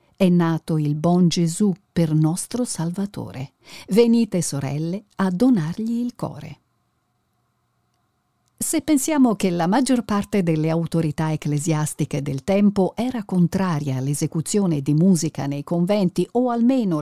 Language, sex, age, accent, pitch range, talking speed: Italian, female, 50-69, native, 160-235 Hz, 120 wpm